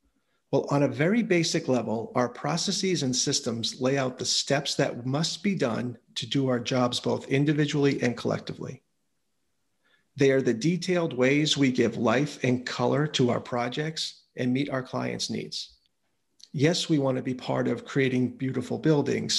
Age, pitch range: 40-59, 125-155 Hz